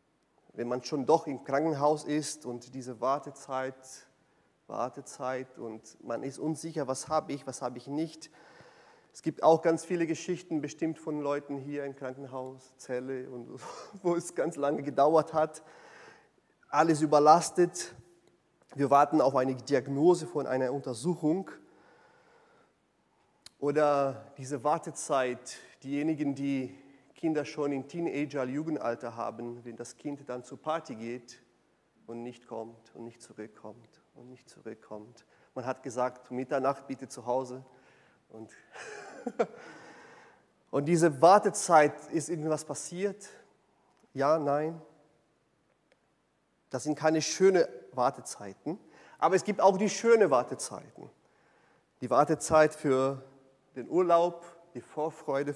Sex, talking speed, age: male, 120 wpm, 30-49